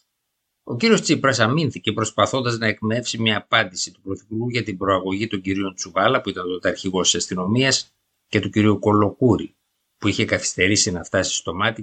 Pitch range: 95-125 Hz